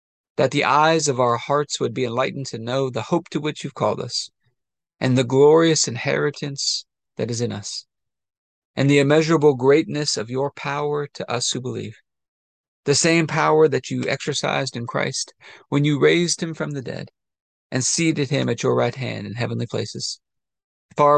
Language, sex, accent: English, male, American